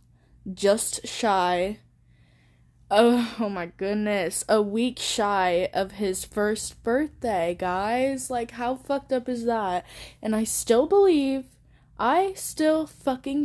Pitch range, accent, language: 180-225 Hz, American, English